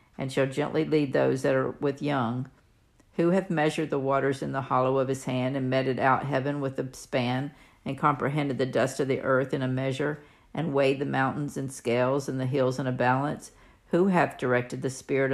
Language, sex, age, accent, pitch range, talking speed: English, female, 50-69, American, 130-145 Hz, 210 wpm